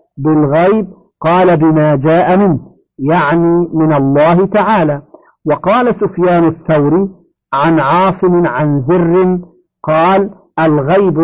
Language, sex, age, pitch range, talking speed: Arabic, male, 50-69, 155-180 Hz, 95 wpm